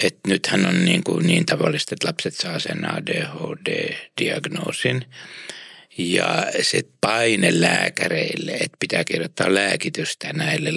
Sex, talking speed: male, 110 wpm